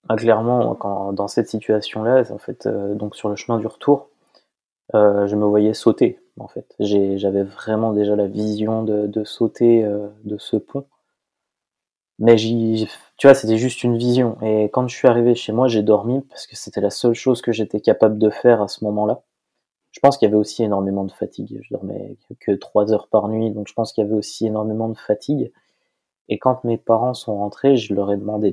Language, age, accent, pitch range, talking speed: French, 20-39, French, 105-120 Hz, 220 wpm